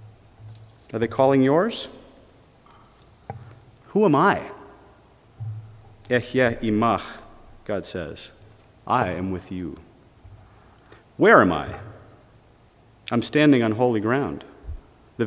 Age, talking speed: 40-59, 95 wpm